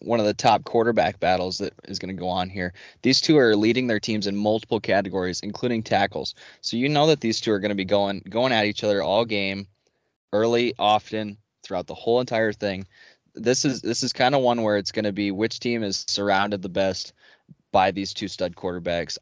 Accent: American